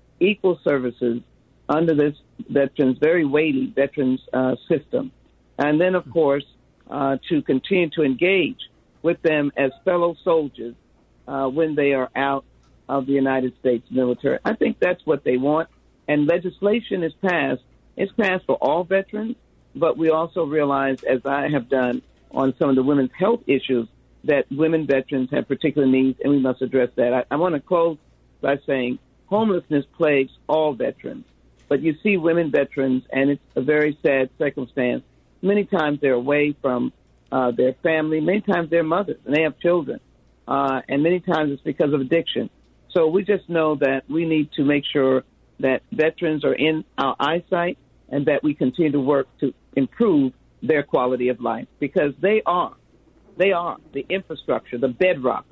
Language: English